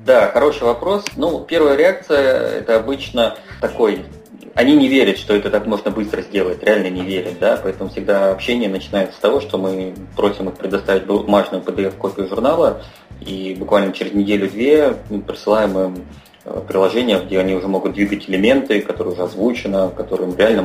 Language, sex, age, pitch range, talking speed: Russian, male, 20-39, 95-115 Hz, 155 wpm